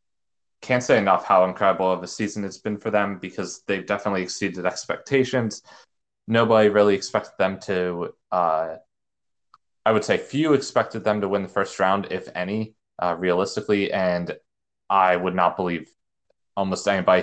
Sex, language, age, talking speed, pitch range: male, English, 20-39, 155 wpm, 90-105 Hz